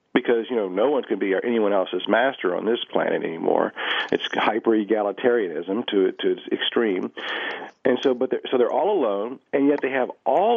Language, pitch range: English, 125-165 Hz